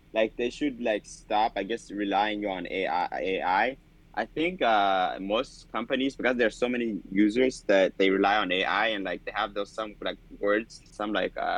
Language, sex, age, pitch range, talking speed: English, male, 20-39, 100-120 Hz, 190 wpm